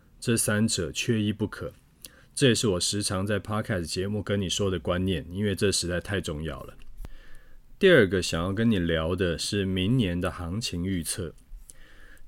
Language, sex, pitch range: Chinese, male, 85-110 Hz